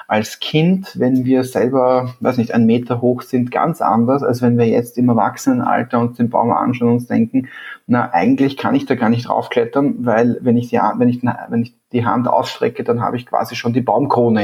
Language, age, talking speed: German, 30-49, 215 wpm